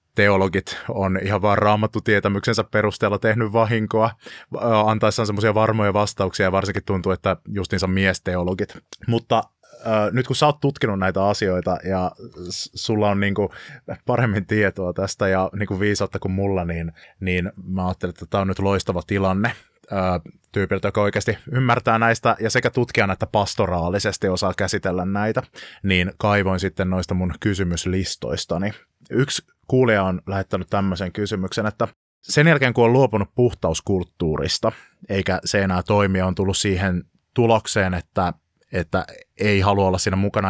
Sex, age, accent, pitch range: male, 20-39, native, 95-110 Hz